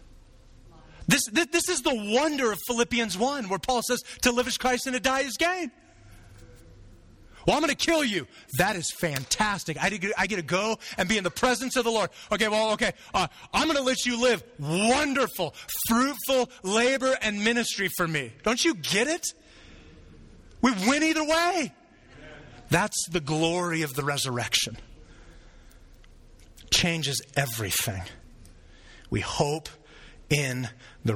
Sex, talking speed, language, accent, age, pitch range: male, 155 wpm, English, American, 30-49, 150-230 Hz